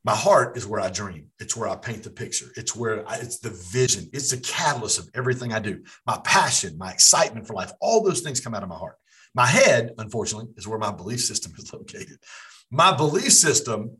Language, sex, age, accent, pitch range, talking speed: English, male, 50-69, American, 105-150 Hz, 220 wpm